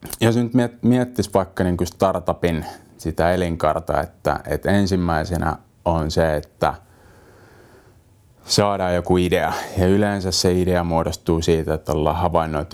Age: 30-49